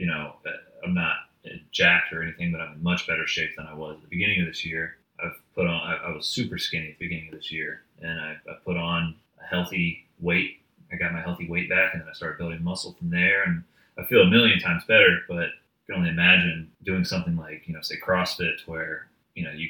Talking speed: 255 wpm